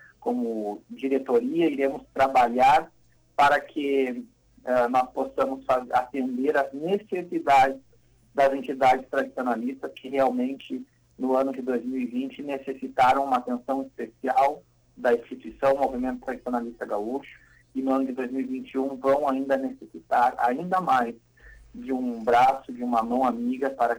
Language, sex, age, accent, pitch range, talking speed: Portuguese, male, 50-69, Brazilian, 120-145 Hz, 125 wpm